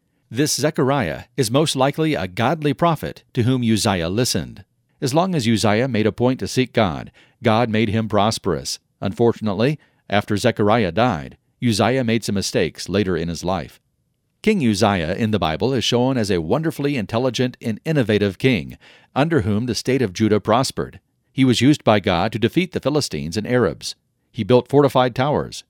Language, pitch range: English, 105-135 Hz